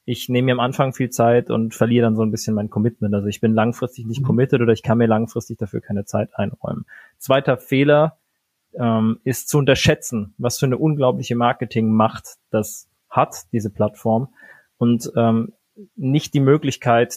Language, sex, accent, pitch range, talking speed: German, male, German, 115-130 Hz, 180 wpm